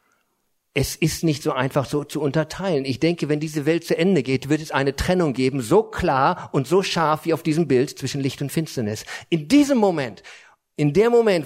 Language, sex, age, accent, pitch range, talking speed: German, male, 50-69, German, 140-200 Hz, 210 wpm